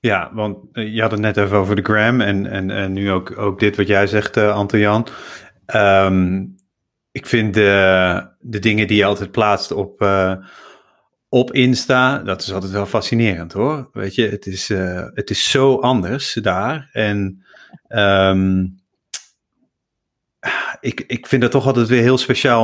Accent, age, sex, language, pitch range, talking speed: Dutch, 30-49, male, Dutch, 100-120 Hz, 170 wpm